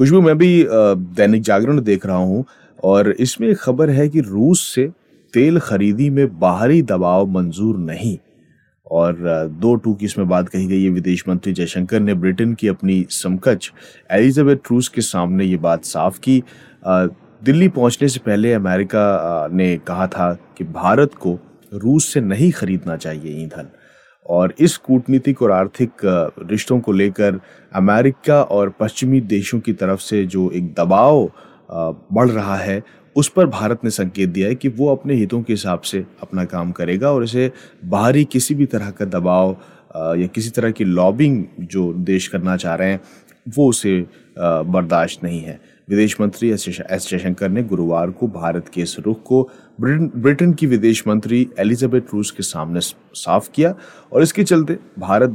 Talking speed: 165 wpm